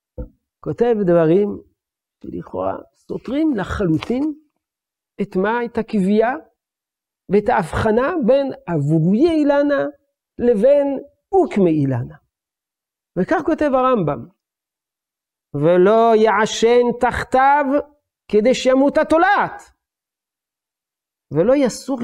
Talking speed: 75 wpm